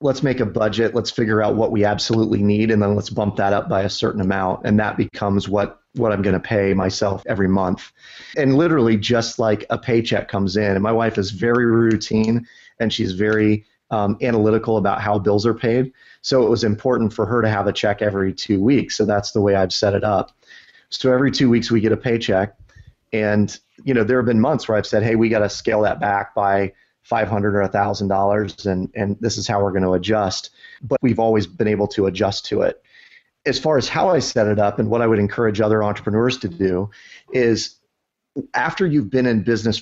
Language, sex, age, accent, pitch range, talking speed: English, male, 30-49, American, 100-115 Hz, 230 wpm